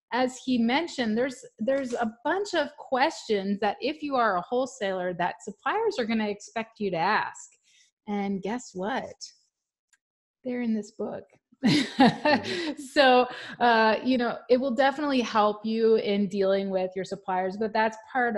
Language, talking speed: English, 155 wpm